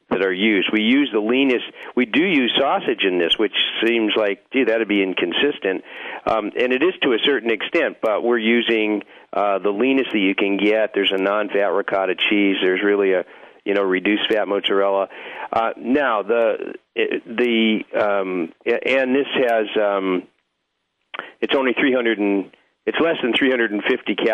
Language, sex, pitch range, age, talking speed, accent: English, male, 100-140 Hz, 50-69, 170 wpm, American